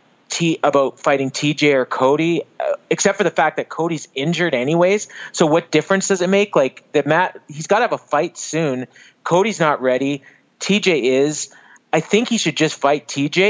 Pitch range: 130-170 Hz